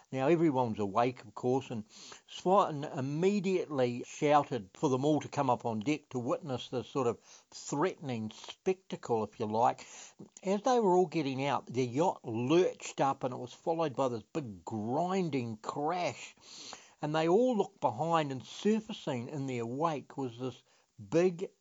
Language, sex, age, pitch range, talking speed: English, male, 60-79, 125-160 Hz, 165 wpm